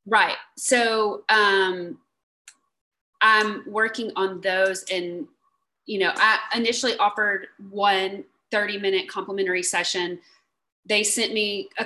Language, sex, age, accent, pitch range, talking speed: English, female, 30-49, American, 190-220 Hz, 110 wpm